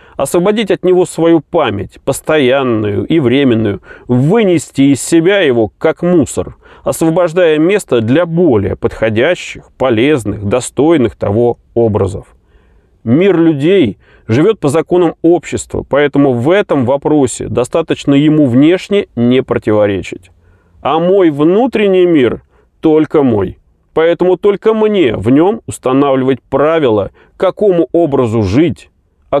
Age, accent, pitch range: 30-49, native, 115-165 Hz